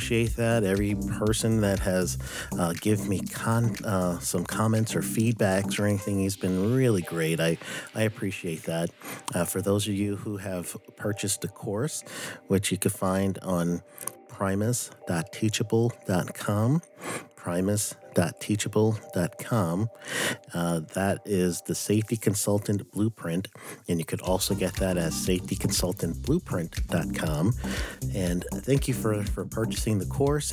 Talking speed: 130 wpm